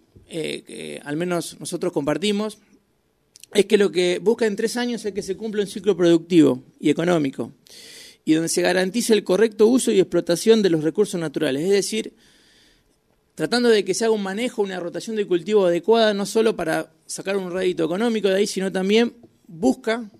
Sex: male